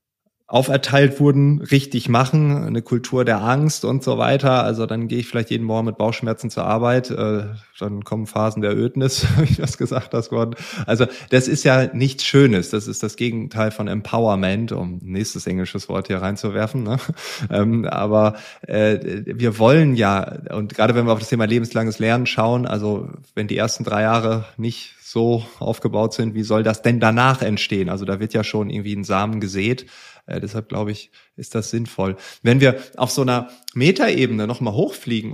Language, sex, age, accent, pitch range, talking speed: German, male, 20-39, German, 105-130 Hz, 175 wpm